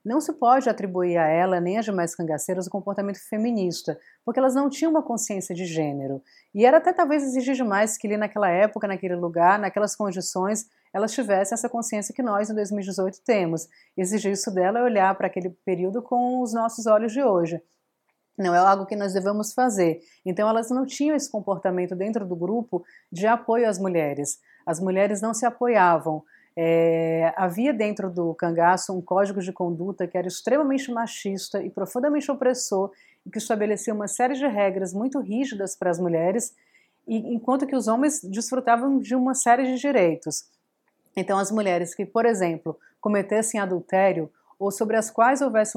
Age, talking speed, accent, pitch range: 30-49, 175 wpm, Brazilian, 185-230 Hz